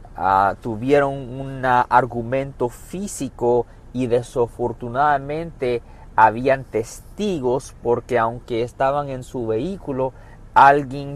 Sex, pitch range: male, 115-140 Hz